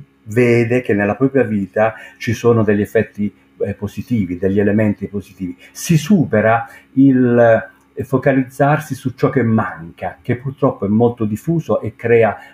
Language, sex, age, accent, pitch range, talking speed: Italian, male, 50-69, native, 105-140 Hz, 135 wpm